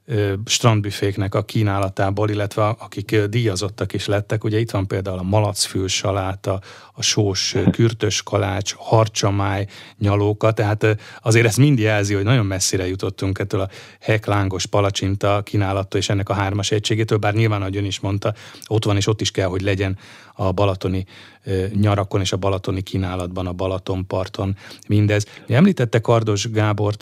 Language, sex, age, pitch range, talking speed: Hungarian, male, 30-49, 100-110 Hz, 150 wpm